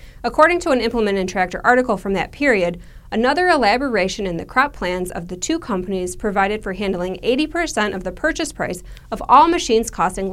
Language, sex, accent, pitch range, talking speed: English, female, American, 195-280 Hz, 185 wpm